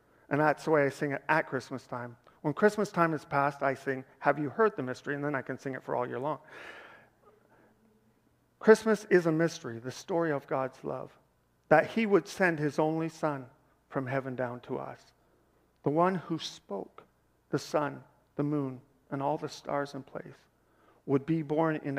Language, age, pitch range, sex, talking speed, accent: English, 50-69, 130-155 Hz, male, 195 wpm, American